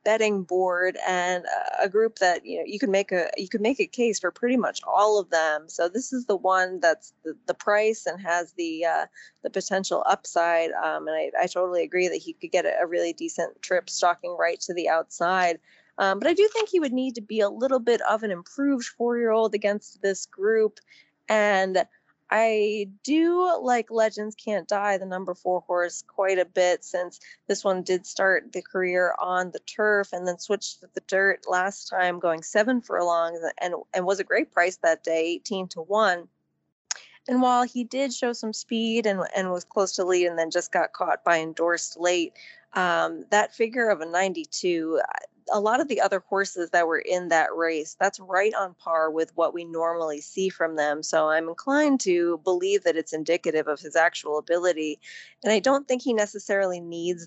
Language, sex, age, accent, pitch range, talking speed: English, female, 20-39, American, 170-220 Hz, 200 wpm